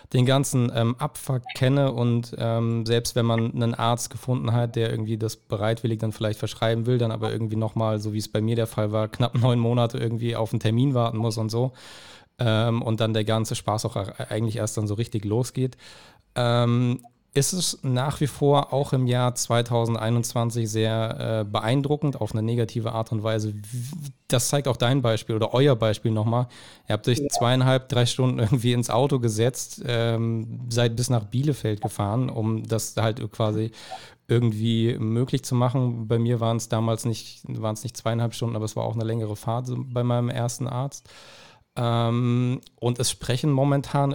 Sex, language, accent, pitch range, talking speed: male, German, German, 110-125 Hz, 180 wpm